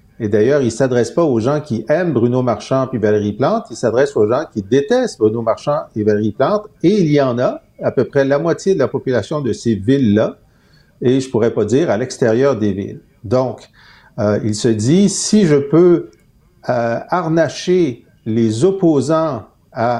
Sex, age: male, 50-69